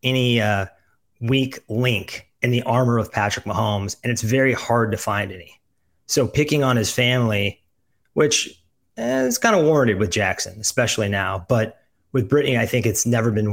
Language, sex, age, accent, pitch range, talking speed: English, male, 30-49, American, 105-130 Hz, 180 wpm